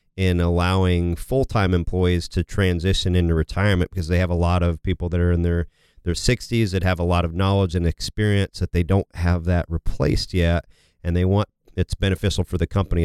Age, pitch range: 40-59, 85-105 Hz